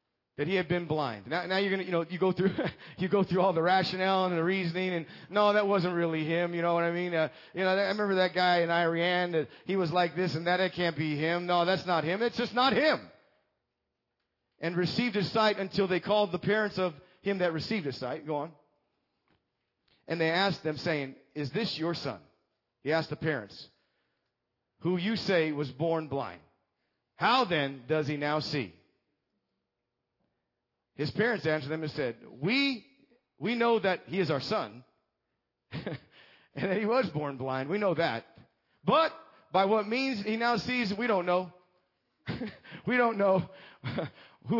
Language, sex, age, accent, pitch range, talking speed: English, male, 40-59, American, 155-200 Hz, 190 wpm